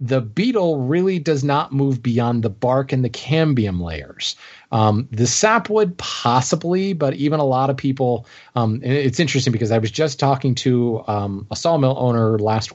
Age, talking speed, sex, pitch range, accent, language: 30-49, 180 wpm, male, 115-145 Hz, American, English